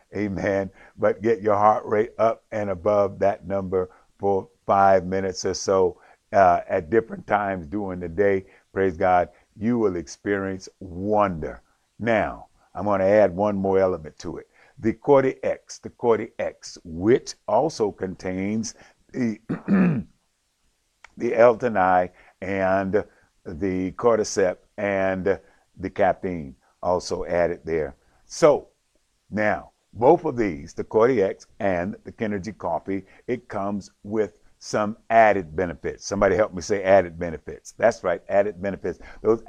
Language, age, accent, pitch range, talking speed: English, 50-69, American, 95-115 Hz, 135 wpm